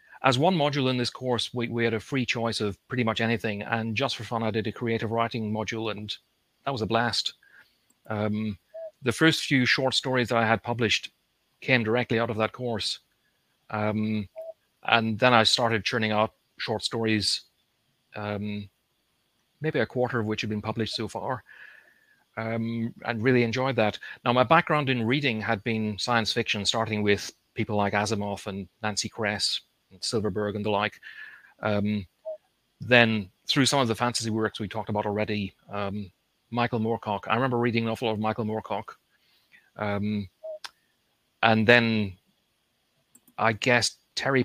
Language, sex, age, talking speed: English, male, 40-59, 165 wpm